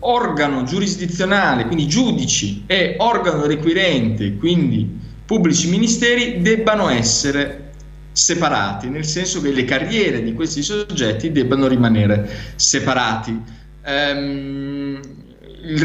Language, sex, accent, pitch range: Italian, male, native, 125-175 Hz